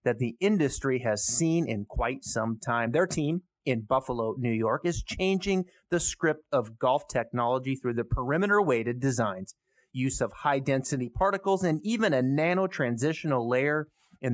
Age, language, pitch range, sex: 30-49, English, 120-165 Hz, male